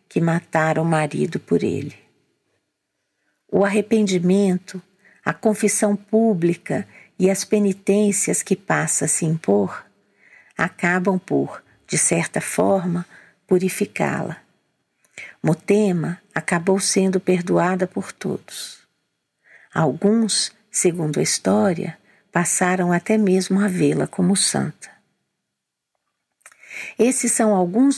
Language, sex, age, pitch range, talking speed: Portuguese, female, 50-69, 175-210 Hz, 95 wpm